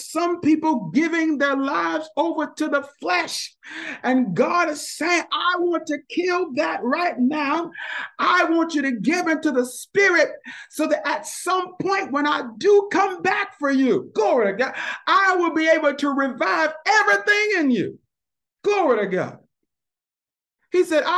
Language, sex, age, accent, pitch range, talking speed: English, male, 50-69, American, 265-340 Hz, 165 wpm